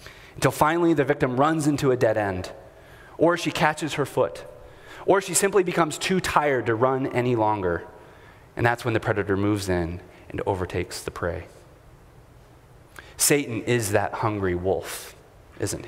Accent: American